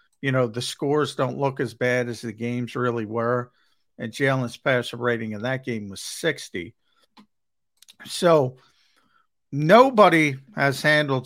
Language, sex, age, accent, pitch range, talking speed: English, male, 50-69, American, 115-135 Hz, 140 wpm